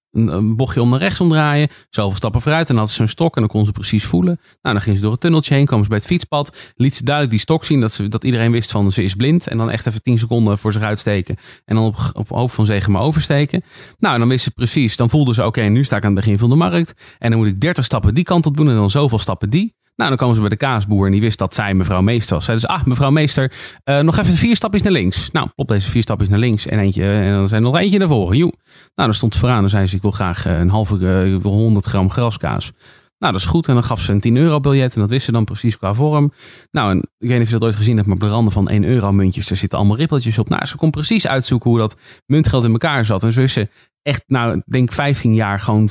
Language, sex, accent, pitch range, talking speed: Dutch, male, Dutch, 105-135 Hz, 290 wpm